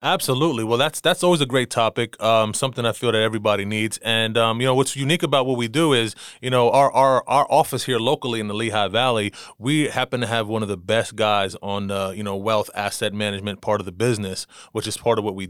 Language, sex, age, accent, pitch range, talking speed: English, male, 30-49, American, 110-125 Hz, 250 wpm